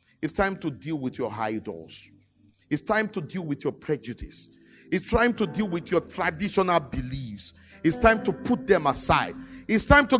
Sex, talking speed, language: male, 180 wpm, English